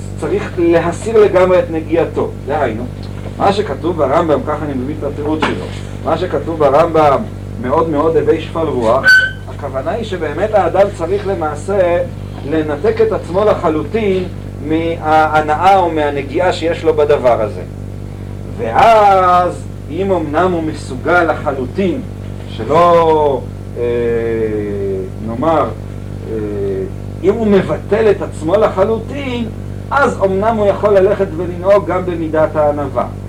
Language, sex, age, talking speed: Hebrew, male, 50-69, 115 wpm